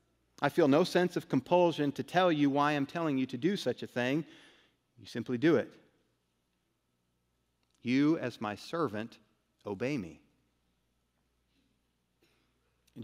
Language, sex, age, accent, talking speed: English, male, 40-59, American, 135 wpm